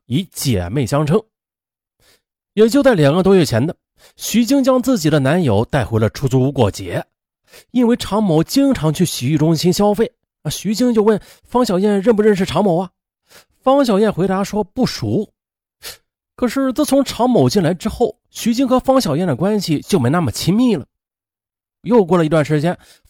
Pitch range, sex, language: 135-215 Hz, male, Chinese